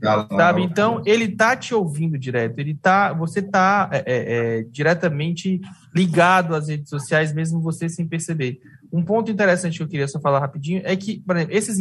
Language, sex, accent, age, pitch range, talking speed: English, male, Brazilian, 20-39, 150-195 Hz, 175 wpm